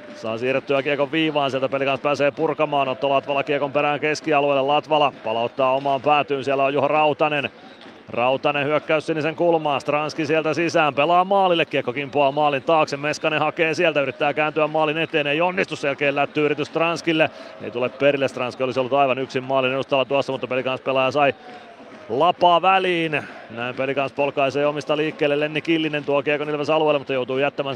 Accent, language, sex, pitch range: native, Finnish, male, 140-160 Hz